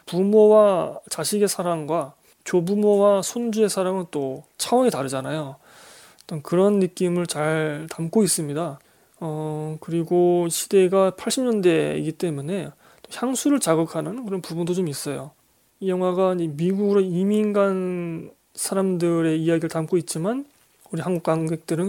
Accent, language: native, Korean